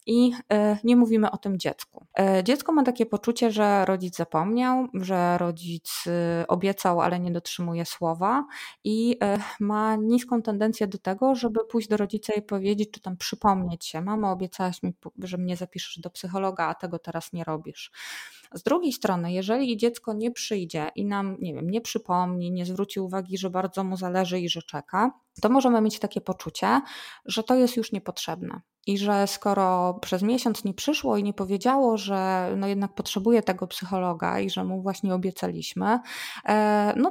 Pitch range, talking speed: 185-220 Hz, 170 wpm